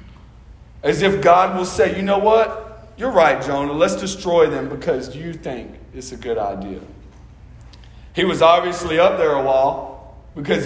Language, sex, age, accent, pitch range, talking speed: English, male, 40-59, American, 145-195 Hz, 165 wpm